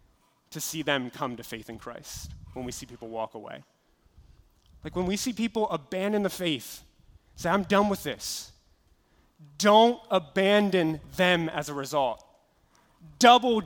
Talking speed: 150 wpm